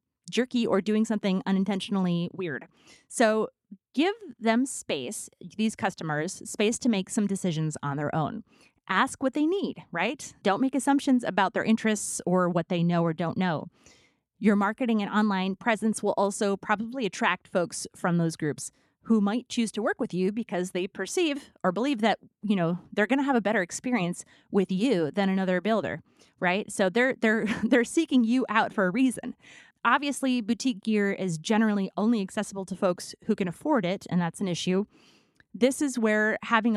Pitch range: 180-230 Hz